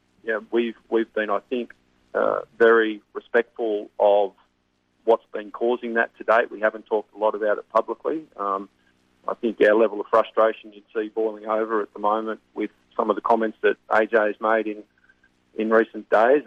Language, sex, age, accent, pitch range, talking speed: English, male, 40-59, Australian, 100-110 Hz, 185 wpm